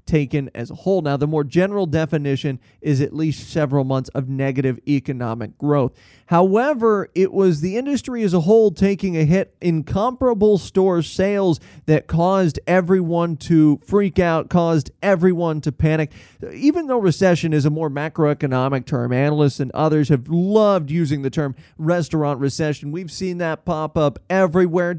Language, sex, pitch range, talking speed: English, male, 145-185 Hz, 160 wpm